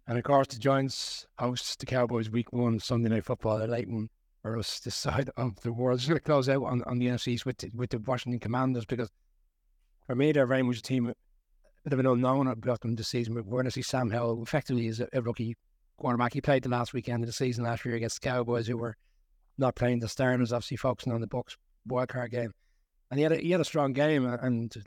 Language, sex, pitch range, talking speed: English, male, 115-130 Hz, 250 wpm